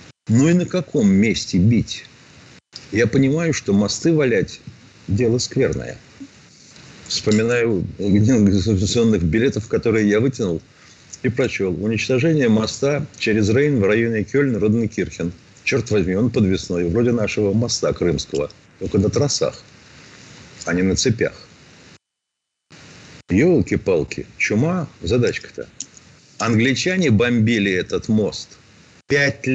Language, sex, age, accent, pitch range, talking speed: Russian, male, 50-69, native, 105-140 Hz, 110 wpm